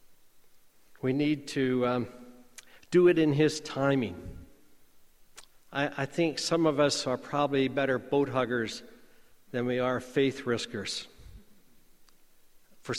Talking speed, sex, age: 120 wpm, male, 60-79